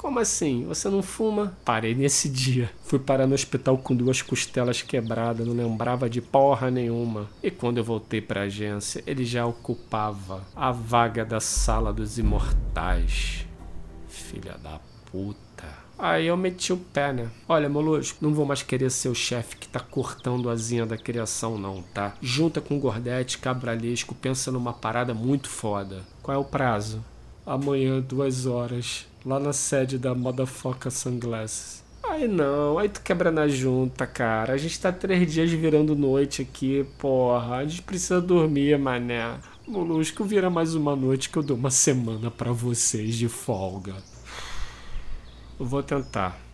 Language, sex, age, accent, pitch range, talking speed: Portuguese, male, 40-59, Brazilian, 115-145 Hz, 160 wpm